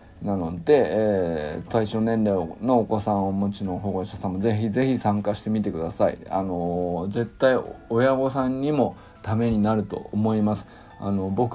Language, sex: Japanese, male